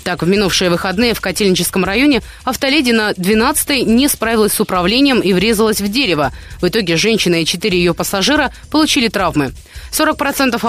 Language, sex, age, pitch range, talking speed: Russian, female, 20-39, 180-250 Hz, 155 wpm